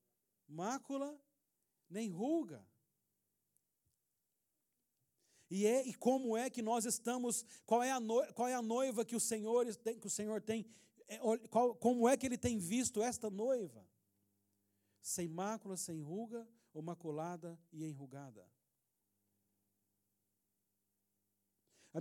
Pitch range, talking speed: 165-235 Hz, 125 wpm